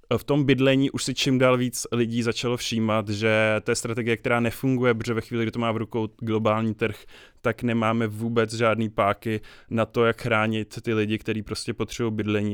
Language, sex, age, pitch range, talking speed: English, male, 20-39, 110-120 Hz, 195 wpm